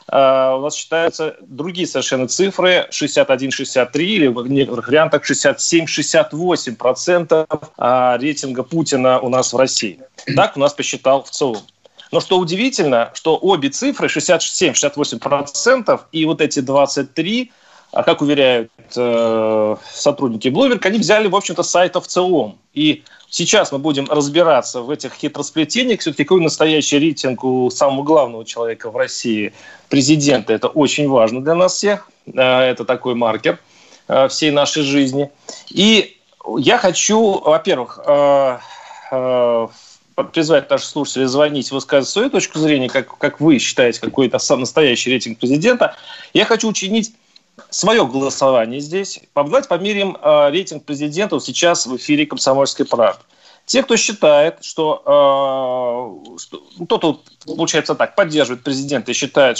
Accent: native